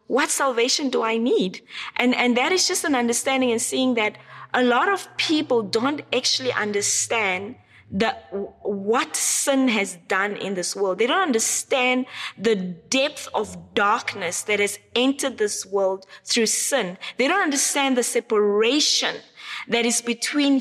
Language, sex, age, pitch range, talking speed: English, female, 20-39, 220-275 Hz, 150 wpm